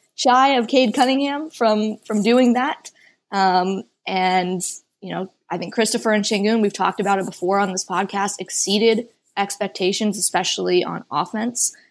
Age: 20-39